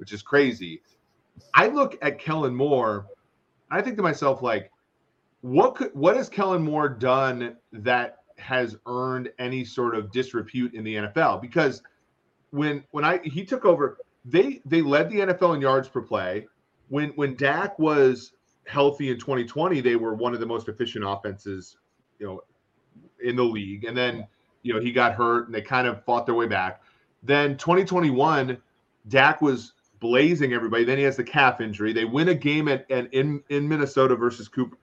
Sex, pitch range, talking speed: male, 115-150 Hz, 180 wpm